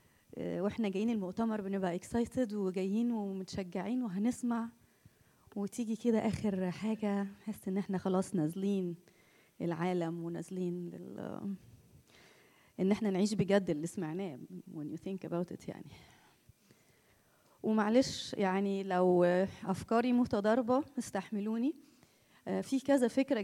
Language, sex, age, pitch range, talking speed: Arabic, female, 20-39, 190-235 Hz, 105 wpm